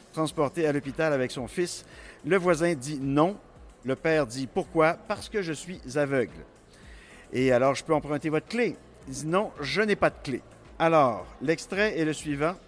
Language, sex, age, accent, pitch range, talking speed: French, male, 50-69, French, 150-200 Hz, 220 wpm